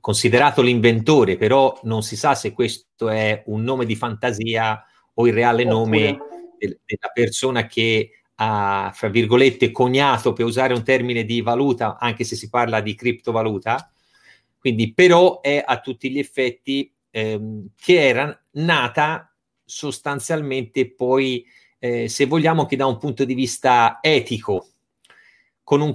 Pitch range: 115-145 Hz